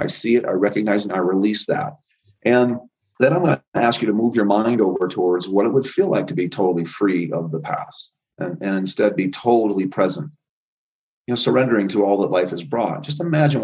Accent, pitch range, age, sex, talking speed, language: American, 95-120 Hz, 40-59, male, 230 wpm, English